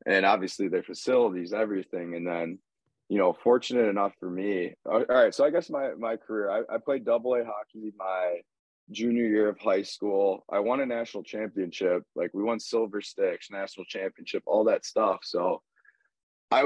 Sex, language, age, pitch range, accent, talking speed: male, English, 20-39, 95-135 Hz, American, 180 wpm